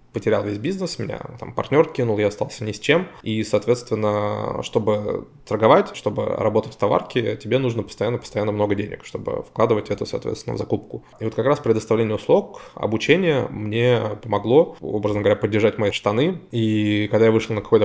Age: 20-39